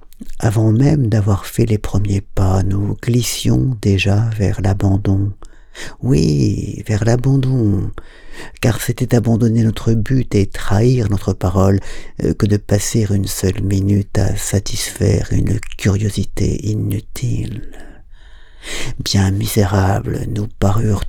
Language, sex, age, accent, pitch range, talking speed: French, male, 50-69, French, 100-115 Hz, 110 wpm